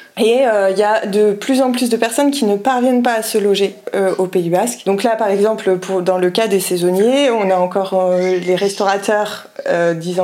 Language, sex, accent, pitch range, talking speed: French, female, French, 200-250 Hz, 235 wpm